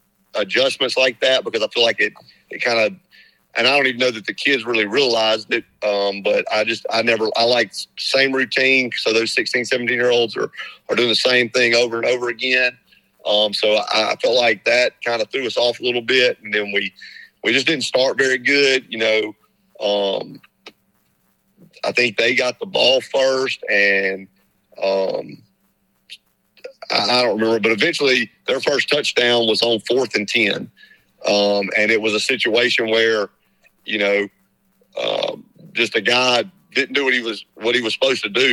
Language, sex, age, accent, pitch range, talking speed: English, male, 40-59, American, 110-130 Hz, 190 wpm